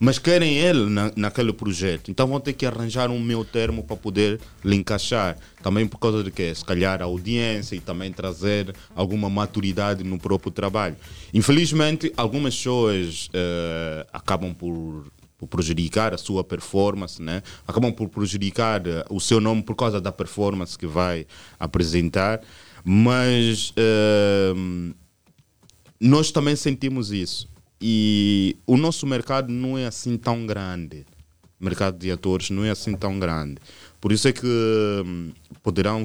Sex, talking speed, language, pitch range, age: male, 150 wpm, Portuguese, 90-115 Hz, 20-39